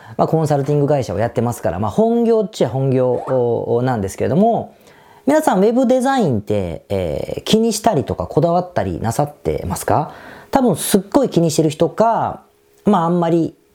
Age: 40-59